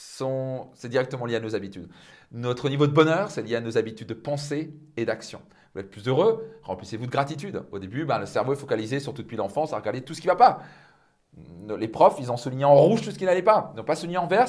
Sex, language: male, French